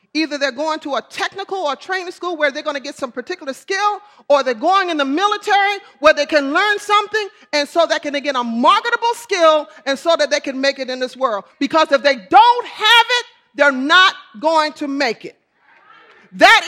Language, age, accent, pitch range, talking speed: English, 40-59, American, 275-365 Hz, 210 wpm